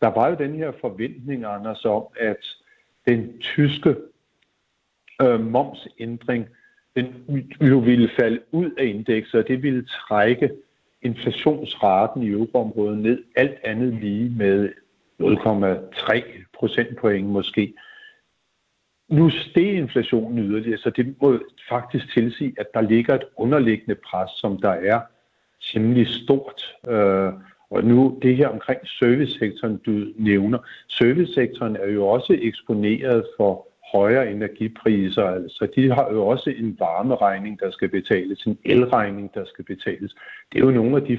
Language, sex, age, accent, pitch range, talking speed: Danish, male, 60-79, native, 105-130 Hz, 135 wpm